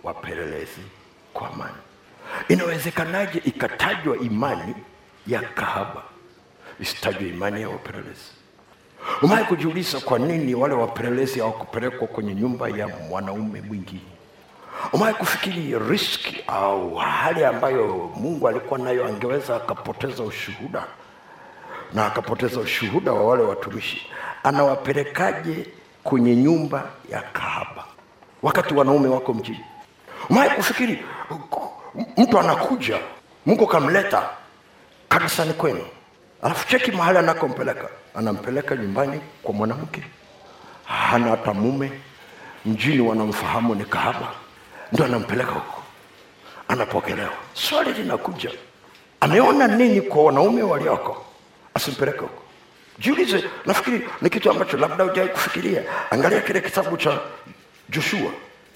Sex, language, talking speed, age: male, Swahili, 105 wpm, 60-79